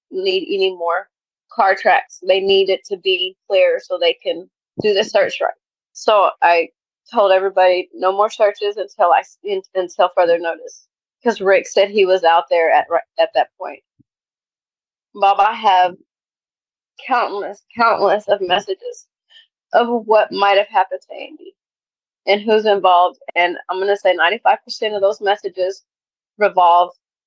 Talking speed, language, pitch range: 150 wpm, English, 185-235 Hz